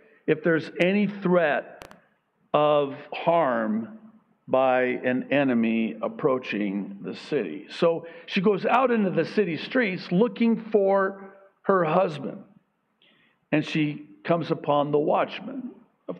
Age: 50-69